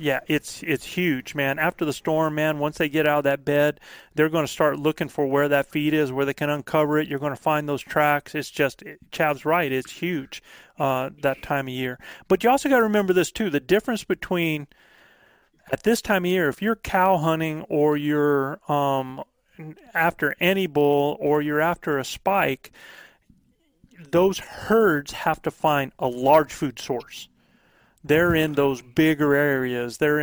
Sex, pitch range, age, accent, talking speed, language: male, 140-165 Hz, 40-59, American, 190 wpm, English